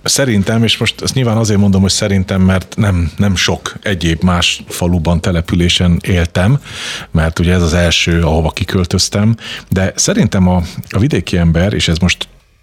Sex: male